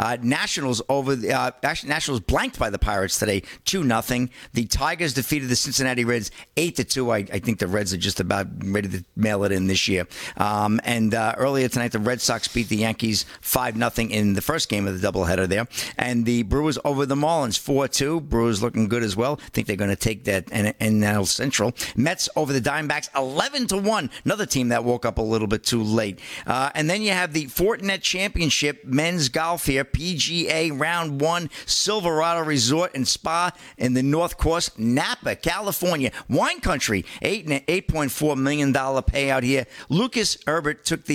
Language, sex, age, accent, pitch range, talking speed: English, male, 50-69, American, 115-155 Hz, 195 wpm